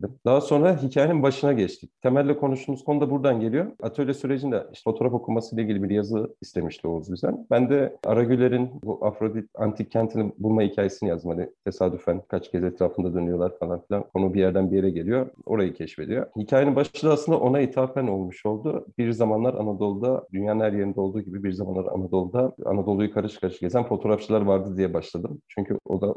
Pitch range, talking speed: 95-125 Hz, 180 wpm